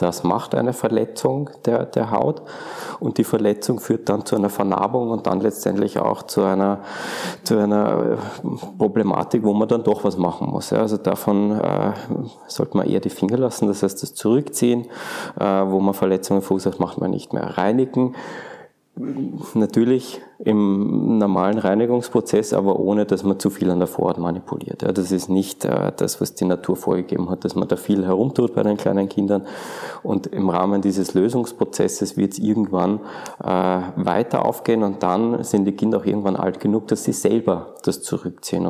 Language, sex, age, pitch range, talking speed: German, male, 20-39, 95-110 Hz, 165 wpm